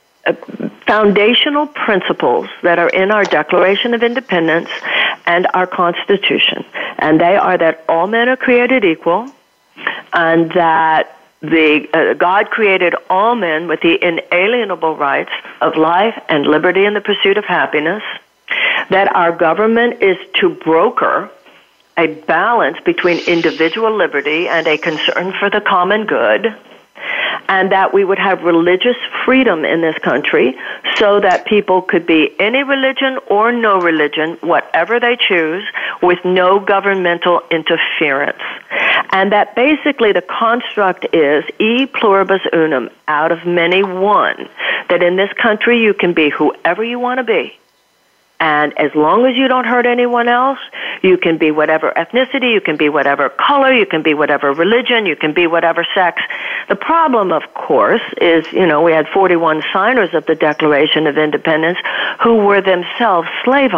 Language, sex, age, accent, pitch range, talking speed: English, female, 50-69, American, 165-235 Hz, 150 wpm